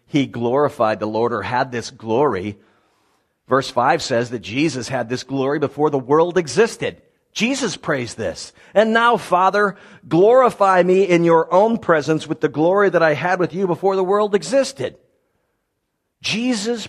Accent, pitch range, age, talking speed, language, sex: American, 155-215 Hz, 50-69, 160 wpm, English, male